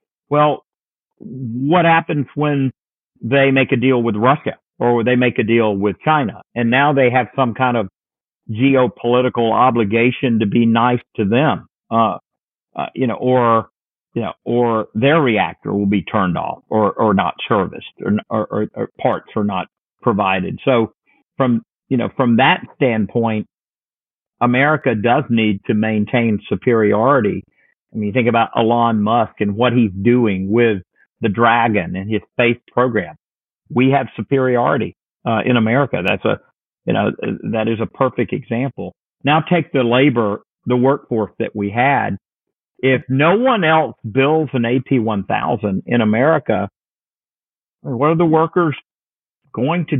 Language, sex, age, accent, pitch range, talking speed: English, male, 50-69, American, 115-135 Hz, 150 wpm